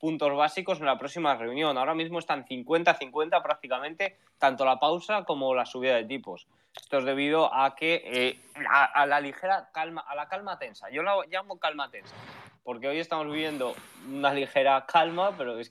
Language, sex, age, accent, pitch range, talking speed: Spanish, male, 20-39, Spanish, 125-150 Hz, 185 wpm